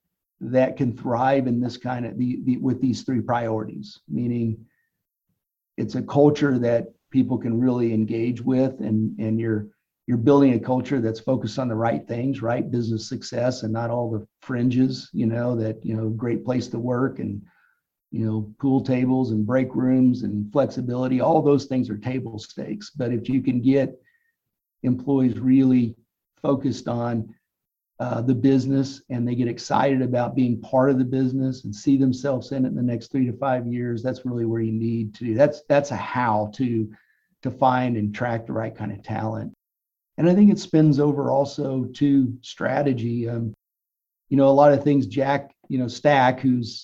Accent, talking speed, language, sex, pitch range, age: American, 185 wpm, English, male, 115-135 Hz, 50-69